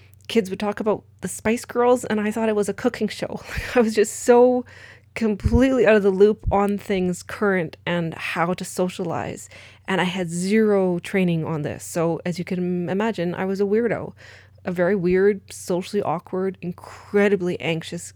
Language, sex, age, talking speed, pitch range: English, female, 20-39, 180 wpm, 165-200 Hz